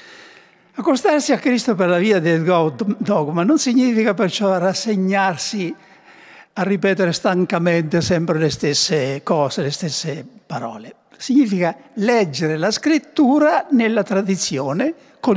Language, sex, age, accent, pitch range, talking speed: Italian, male, 60-79, native, 170-245 Hz, 115 wpm